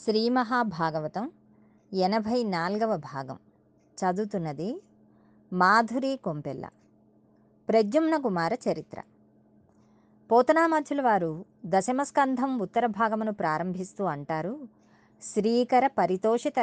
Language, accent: Telugu, native